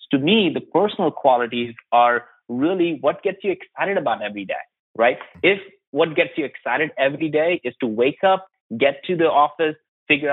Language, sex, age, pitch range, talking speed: English, male, 30-49, 120-170 Hz, 180 wpm